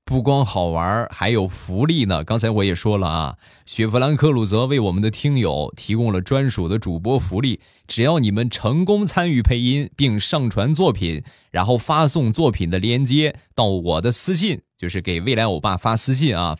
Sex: male